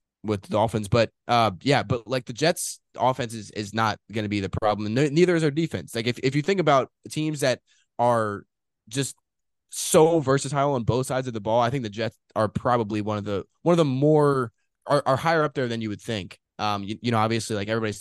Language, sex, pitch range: English, male, 110-140 Hz